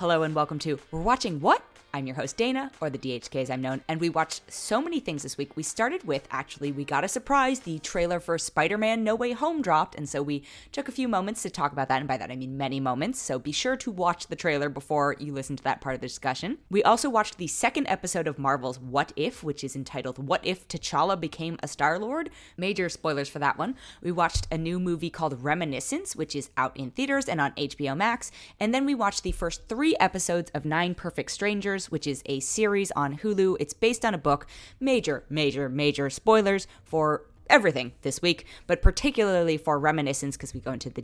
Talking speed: 225 wpm